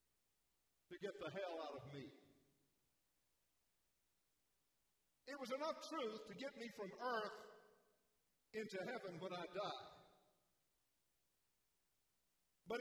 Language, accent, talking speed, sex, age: English, American, 105 wpm, male, 50-69